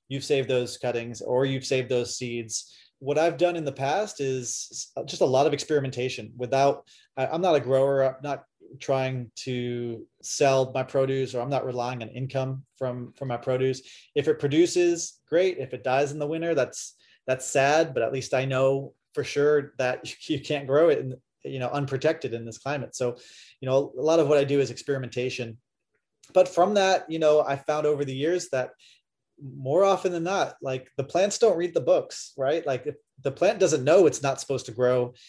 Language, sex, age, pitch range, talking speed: English, male, 30-49, 125-150 Hz, 205 wpm